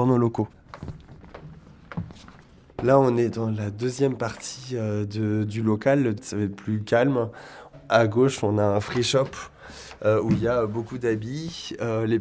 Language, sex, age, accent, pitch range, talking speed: French, male, 20-39, French, 105-120 Hz, 155 wpm